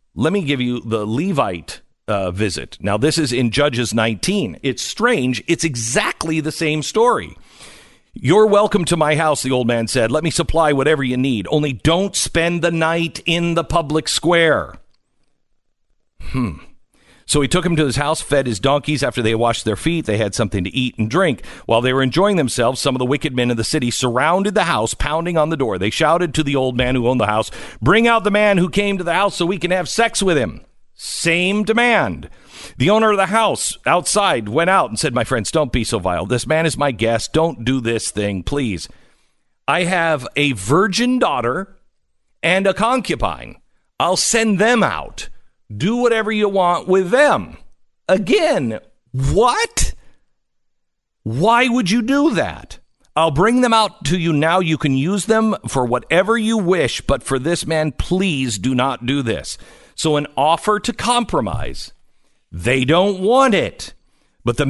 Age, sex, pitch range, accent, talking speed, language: 50-69, male, 125-190 Hz, American, 185 wpm, English